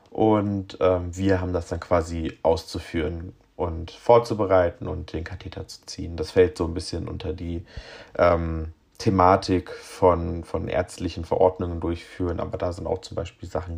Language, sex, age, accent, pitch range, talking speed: German, male, 30-49, German, 85-95 Hz, 155 wpm